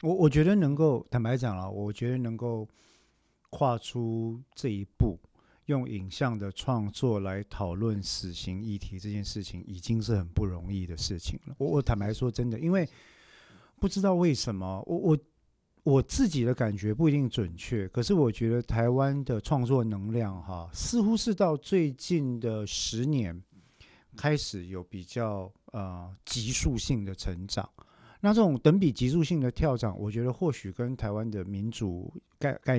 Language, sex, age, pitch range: Chinese, male, 50-69, 100-130 Hz